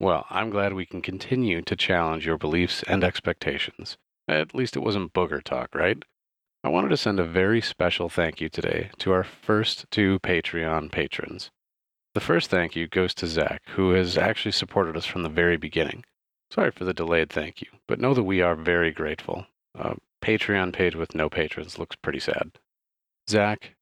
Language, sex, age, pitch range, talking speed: English, male, 40-59, 85-105 Hz, 185 wpm